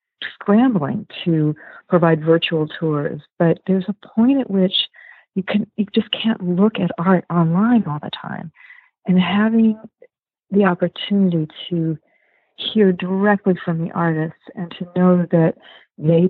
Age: 50-69